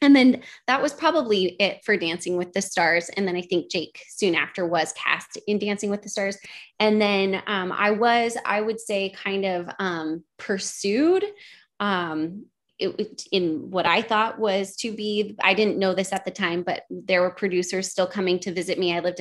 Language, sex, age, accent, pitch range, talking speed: English, female, 20-39, American, 175-210 Hz, 195 wpm